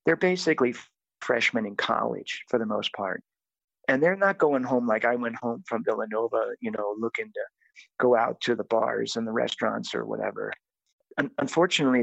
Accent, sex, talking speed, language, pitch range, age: American, male, 175 wpm, English, 120-140 Hz, 50-69